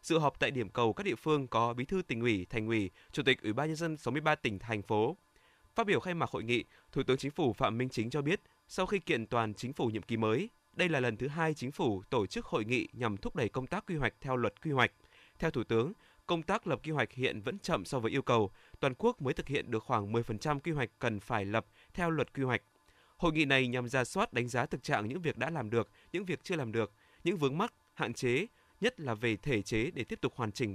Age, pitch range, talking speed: 20-39, 115-155 Hz, 275 wpm